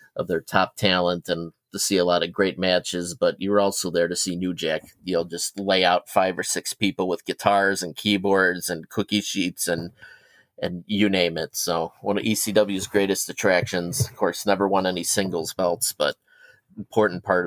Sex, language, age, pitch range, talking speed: male, English, 30-49, 90-105 Hz, 195 wpm